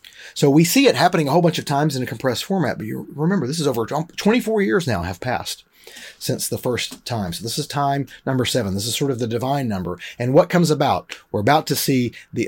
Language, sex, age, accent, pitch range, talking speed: English, male, 30-49, American, 115-155 Hz, 245 wpm